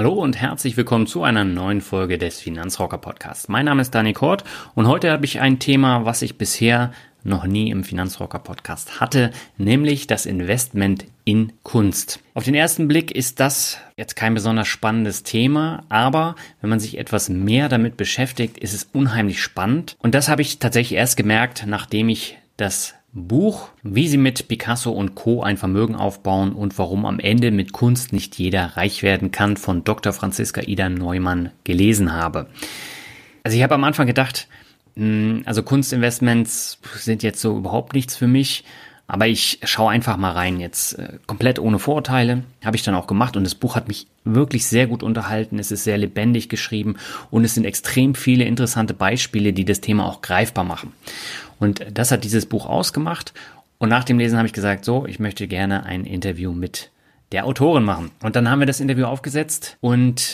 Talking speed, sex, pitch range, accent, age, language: 180 wpm, male, 100-125 Hz, German, 30-49, German